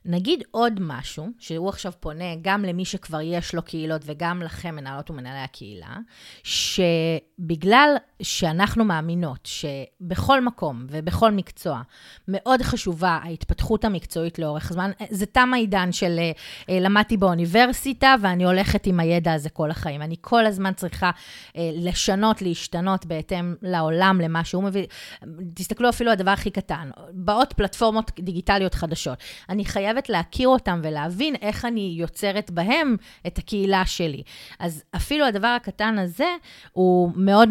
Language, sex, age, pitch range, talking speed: Hebrew, female, 30-49, 165-210 Hz, 135 wpm